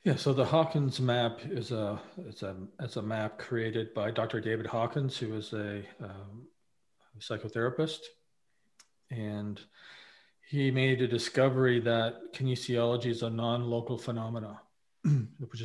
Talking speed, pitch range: 130 wpm, 110-125 Hz